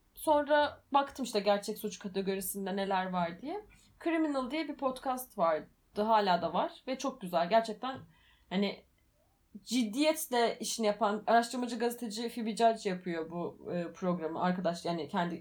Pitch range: 210-295 Hz